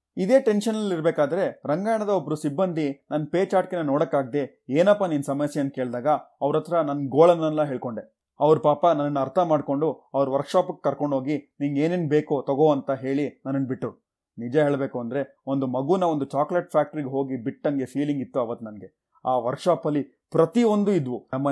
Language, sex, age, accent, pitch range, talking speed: Kannada, male, 30-49, native, 135-160 Hz, 150 wpm